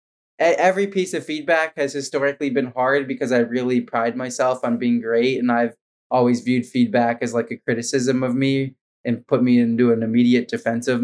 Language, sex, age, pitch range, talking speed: English, male, 20-39, 120-140 Hz, 185 wpm